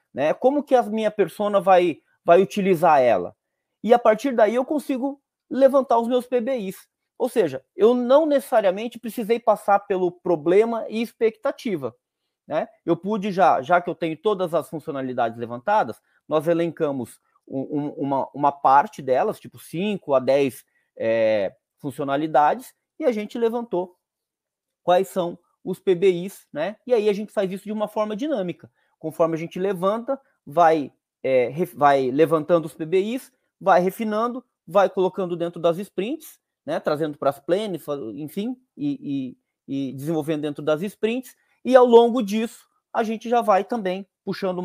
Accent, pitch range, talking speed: Brazilian, 165-235 Hz, 155 wpm